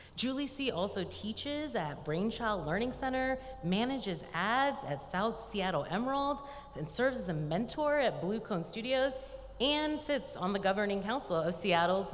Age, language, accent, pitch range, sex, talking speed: 30-49, English, American, 155-220 Hz, female, 155 wpm